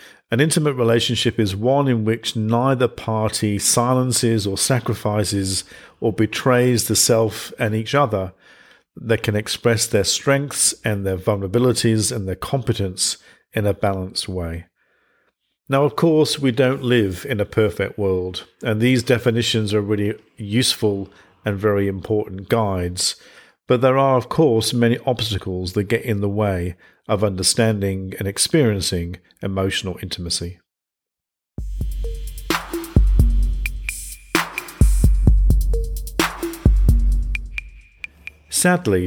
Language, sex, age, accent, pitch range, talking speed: English, male, 50-69, British, 95-120 Hz, 110 wpm